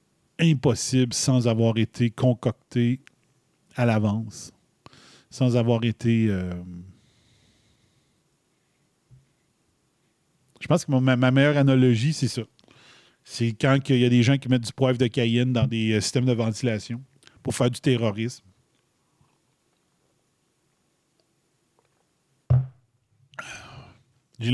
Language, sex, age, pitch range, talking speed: French, male, 40-59, 120-145 Hz, 110 wpm